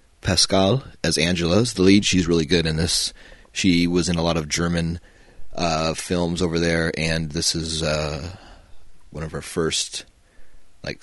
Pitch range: 80-95 Hz